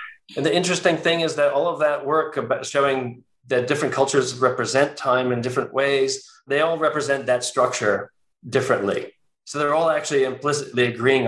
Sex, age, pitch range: male, 40-59, 130-205 Hz